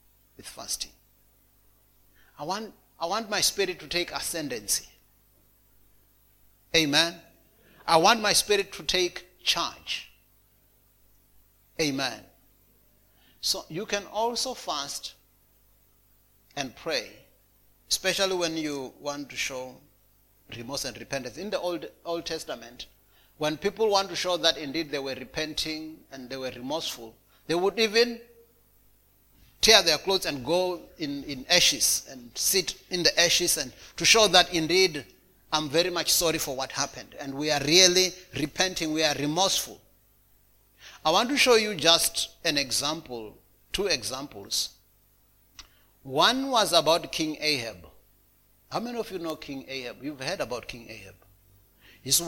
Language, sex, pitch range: English, male, 130-180 Hz